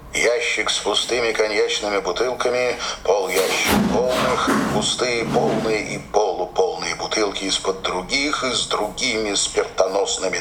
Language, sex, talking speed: Russian, male, 110 wpm